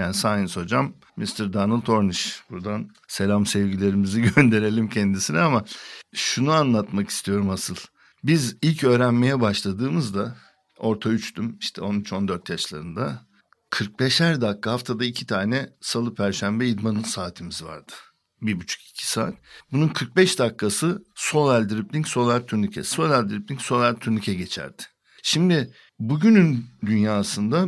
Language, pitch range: Turkish, 110-150 Hz